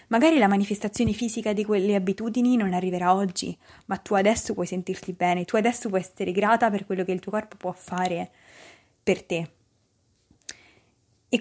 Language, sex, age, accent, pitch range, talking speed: Italian, female, 20-39, native, 185-215 Hz, 170 wpm